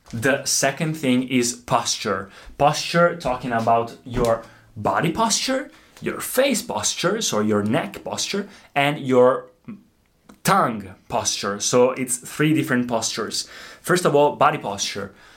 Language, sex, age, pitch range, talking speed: Italian, male, 20-39, 115-150 Hz, 125 wpm